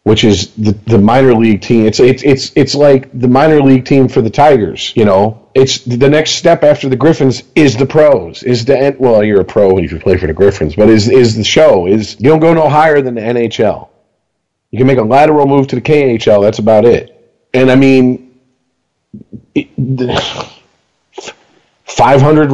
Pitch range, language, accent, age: 120-155 Hz, English, American, 40-59